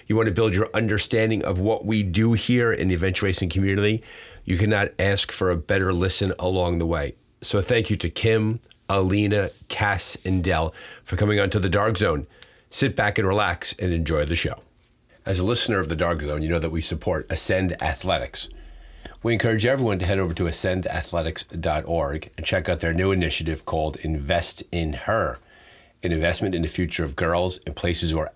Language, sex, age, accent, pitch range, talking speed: English, male, 40-59, American, 80-95 Hz, 195 wpm